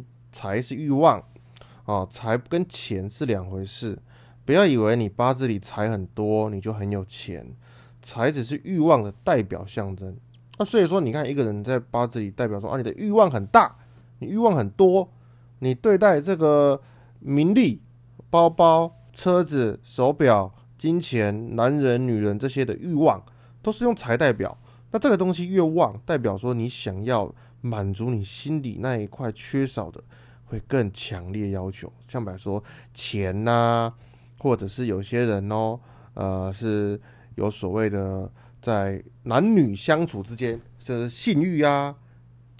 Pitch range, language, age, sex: 110-135 Hz, Chinese, 20-39, male